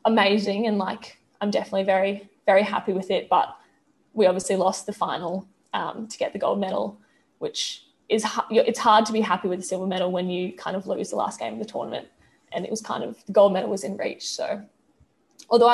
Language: English